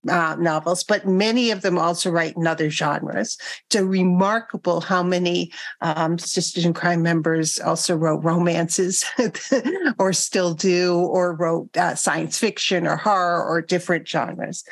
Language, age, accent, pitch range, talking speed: English, 50-69, American, 170-200 Hz, 150 wpm